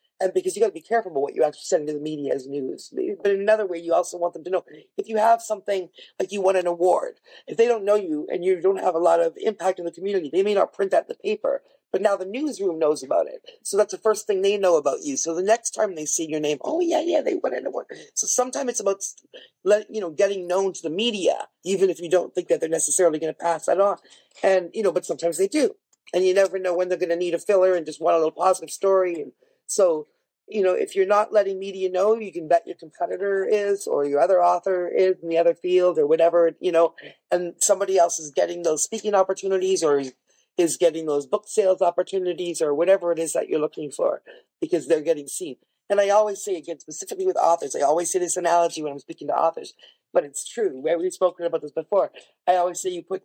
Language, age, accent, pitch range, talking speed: English, 40-59, American, 170-215 Hz, 255 wpm